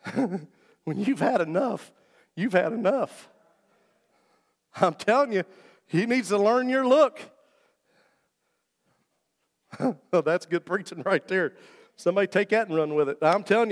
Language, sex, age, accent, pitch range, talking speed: English, male, 50-69, American, 160-225 Hz, 140 wpm